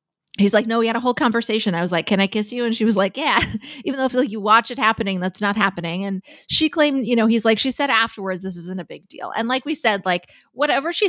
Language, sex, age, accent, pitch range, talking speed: English, female, 20-39, American, 185-245 Hz, 280 wpm